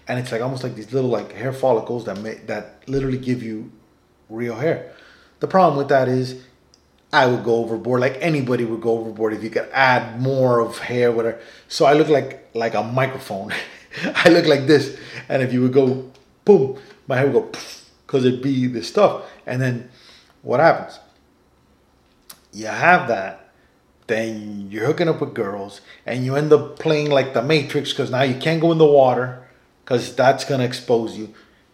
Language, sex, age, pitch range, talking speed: English, male, 30-49, 115-145 Hz, 190 wpm